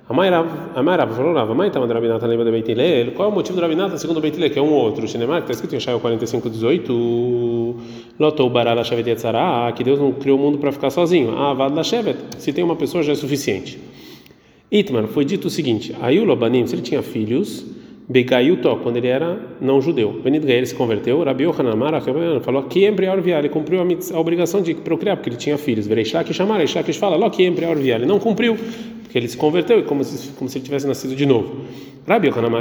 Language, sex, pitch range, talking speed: Portuguese, male, 120-160 Hz, 225 wpm